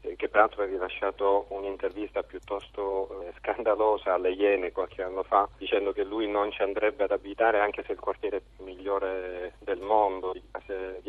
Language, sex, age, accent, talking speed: Italian, male, 40-59, native, 155 wpm